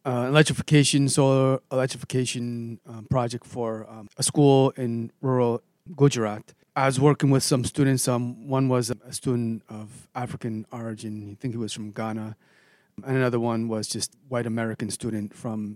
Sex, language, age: male, English, 30-49